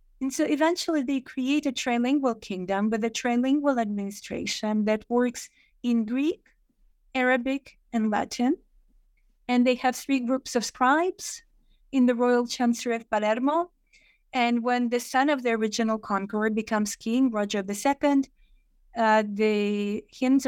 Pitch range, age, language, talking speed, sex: 220-265 Hz, 30-49, English, 140 wpm, female